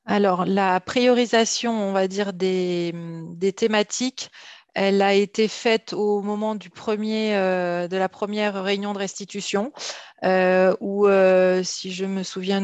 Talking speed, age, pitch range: 145 wpm, 30-49, 185-210 Hz